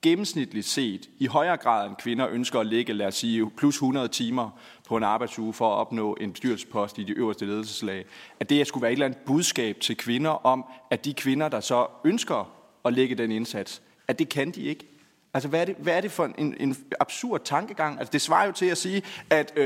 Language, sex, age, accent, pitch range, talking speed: Danish, male, 30-49, native, 125-165 Hz, 220 wpm